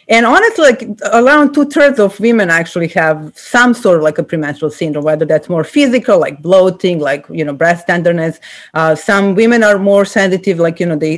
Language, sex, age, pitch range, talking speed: English, female, 30-49, 175-245 Hz, 205 wpm